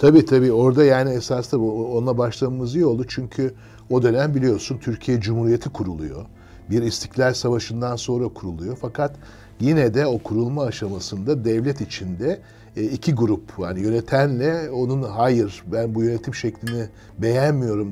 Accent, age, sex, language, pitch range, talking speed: native, 60-79, male, Turkish, 105-125 Hz, 135 wpm